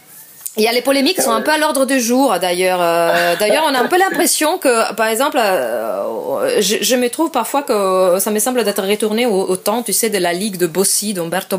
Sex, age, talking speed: female, 20-39, 235 wpm